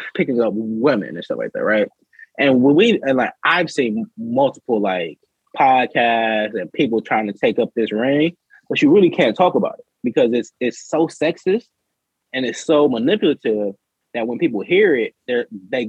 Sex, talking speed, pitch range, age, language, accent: male, 185 wpm, 110-185 Hz, 20-39, English, American